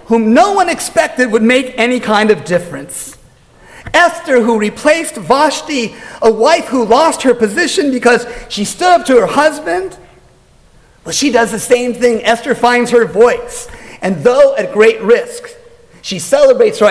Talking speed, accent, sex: 160 wpm, American, male